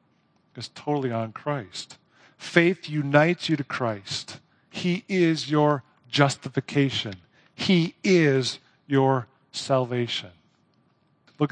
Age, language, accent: 50-69, English, American